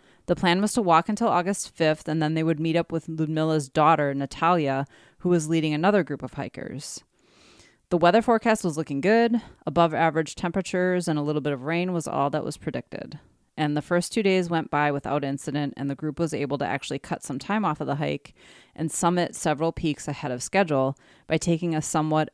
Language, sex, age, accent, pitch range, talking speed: English, female, 30-49, American, 145-175 Hz, 210 wpm